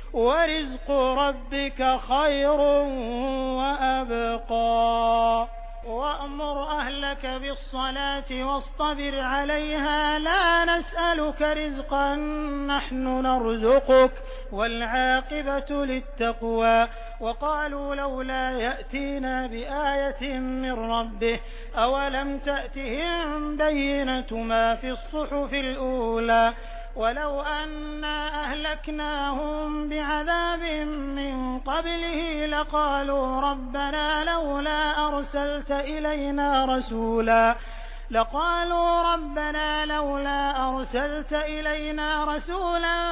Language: Hindi